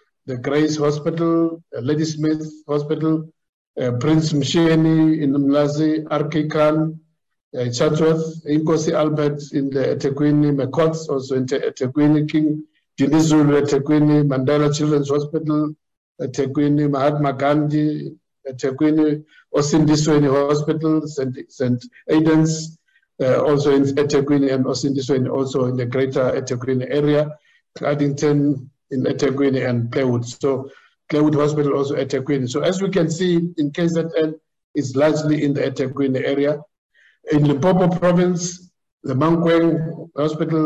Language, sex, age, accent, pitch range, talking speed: English, male, 60-79, South African, 135-155 Hz, 120 wpm